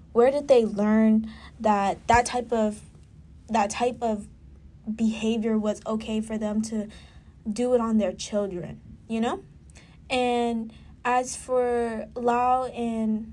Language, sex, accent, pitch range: English, female, American, 215-245 Hz